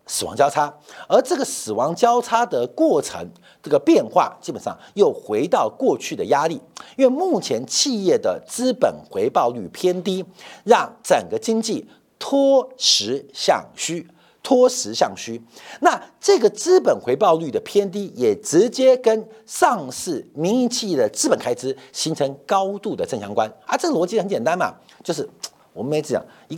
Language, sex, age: Chinese, male, 50-69